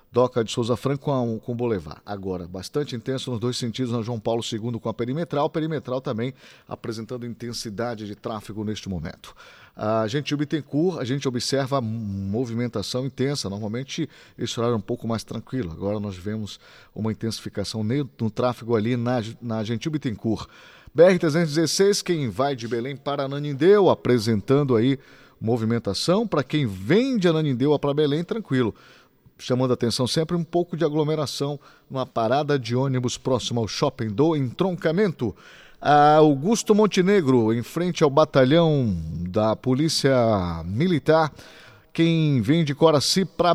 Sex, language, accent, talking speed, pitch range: male, Portuguese, Brazilian, 145 wpm, 115-155 Hz